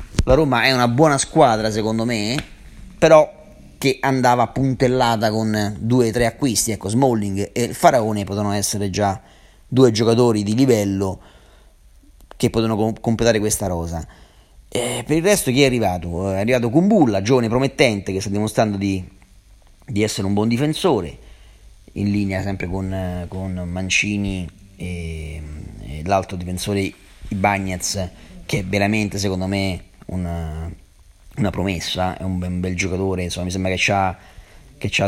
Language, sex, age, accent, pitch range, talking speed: Italian, male, 30-49, native, 90-110 Hz, 145 wpm